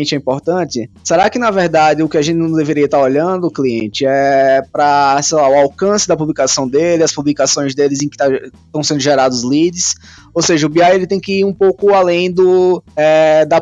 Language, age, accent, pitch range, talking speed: Portuguese, 20-39, Brazilian, 135-165 Hz, 205 wpm